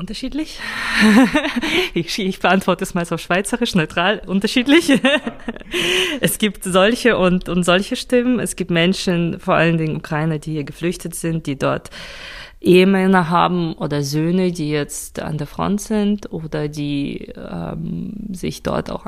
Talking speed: 145 wpm